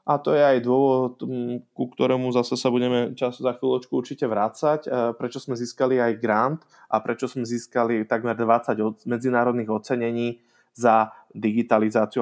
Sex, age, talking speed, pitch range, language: male, 20-39, 145 wpm, 115-140 Hz, Slovak